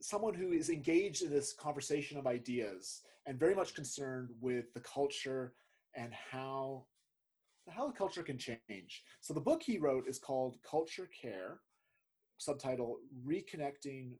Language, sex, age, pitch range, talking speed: English, male, 30-49, 125-180 Hz, 145 wpm